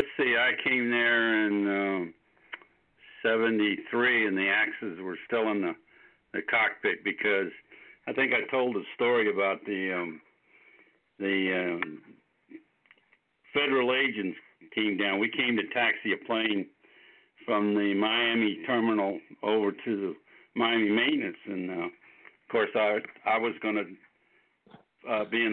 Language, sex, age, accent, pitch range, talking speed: English, male, 60-79, American, 105-130 Hz, 140 wpm